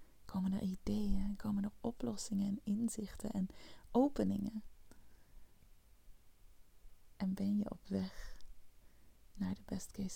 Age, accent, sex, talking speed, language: 20-39, Dutch, female, 105 wpm, Dutch